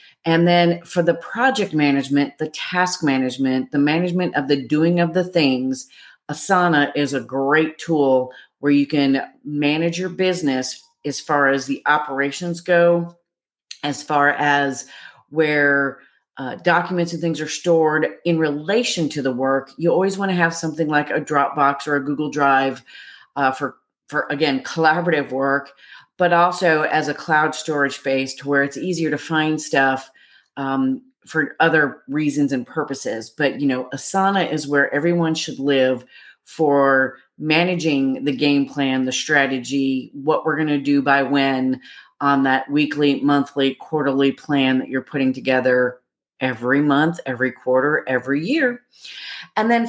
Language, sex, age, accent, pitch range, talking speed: English, female, 40-59, American, 140-175 Hz, 155 wpm